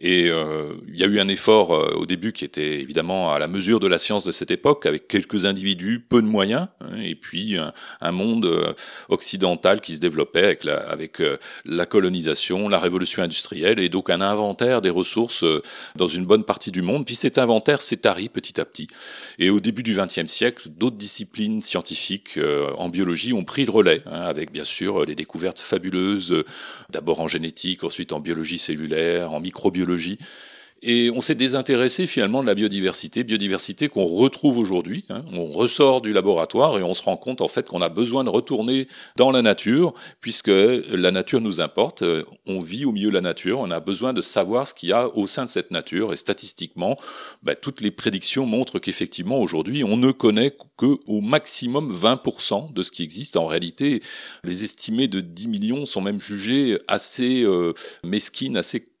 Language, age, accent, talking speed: French, 40-59, French, 195 wpm